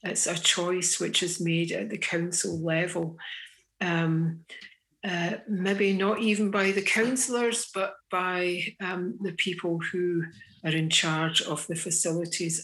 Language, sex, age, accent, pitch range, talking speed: English, female, 60-79, British, 165-185 Hz, 140 wpm